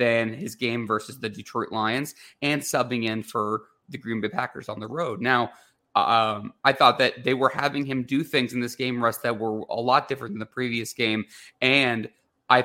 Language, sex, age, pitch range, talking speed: English, male, 30-49, 120-160 Hz, 210 wpm